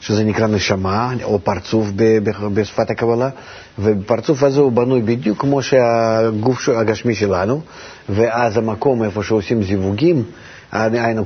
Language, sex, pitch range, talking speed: Hebrew, male, 100-120 Hz, 115 wpm